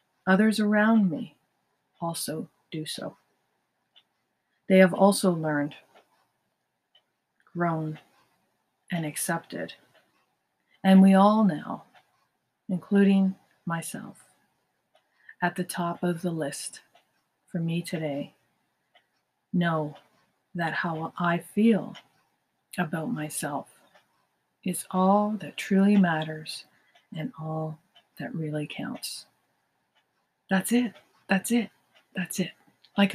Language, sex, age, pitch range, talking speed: English, female, 40-59, 165-195 Hz, 95 wpm